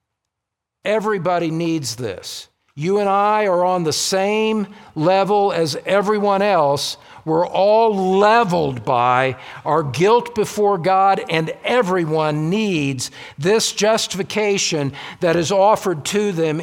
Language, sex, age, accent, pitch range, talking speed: English, male, 50-69, American, 135-195 Hz, 115 wpm